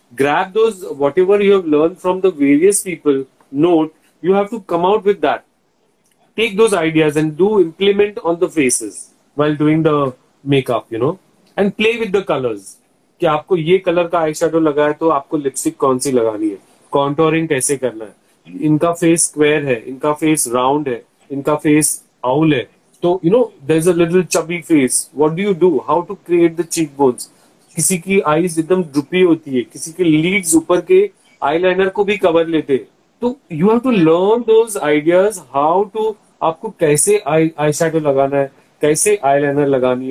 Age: 40-59